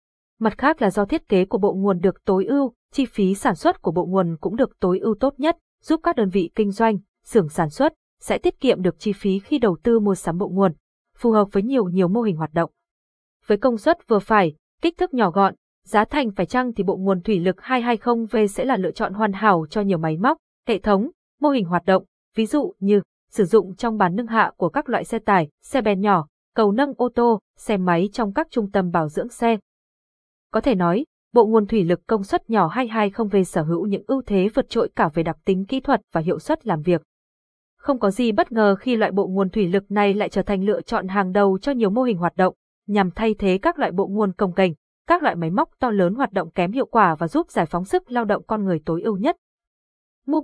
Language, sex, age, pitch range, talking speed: Vietnamese, female, 20-39, 190-240 Hz, 250 wpm